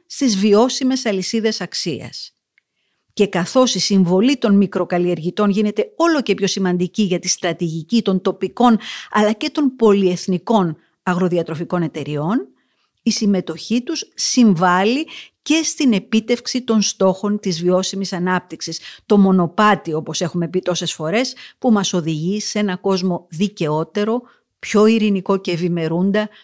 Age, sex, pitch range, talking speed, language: 50-69, female, 180-245 Hz, 125 wpm, Greek